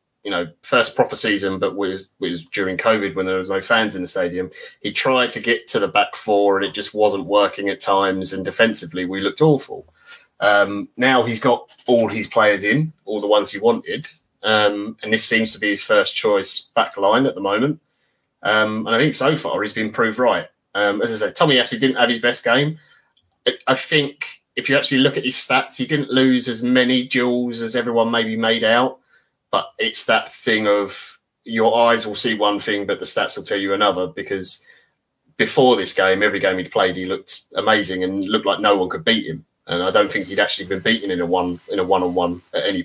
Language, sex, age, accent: English, male, 20-39, British